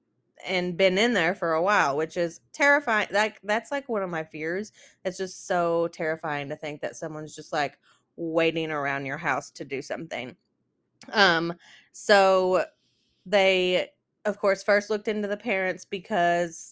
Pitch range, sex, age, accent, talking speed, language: 170-210 Hz, female, 20-39, American, 165 wpm, English